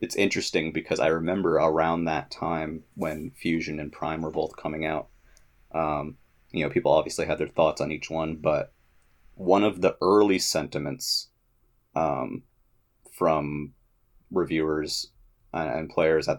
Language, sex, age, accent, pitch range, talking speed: English, male, 30-49, American, 75-95 Hz, 145 wpm